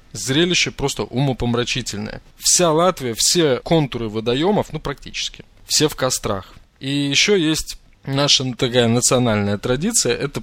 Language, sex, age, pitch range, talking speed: Russian, male, 20-39, 110-150 Hz, 120 wpm